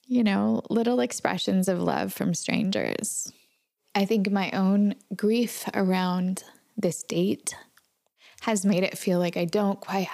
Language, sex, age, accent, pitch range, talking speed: English, female, 10-29, American, 165-200 Hz, 140 wpm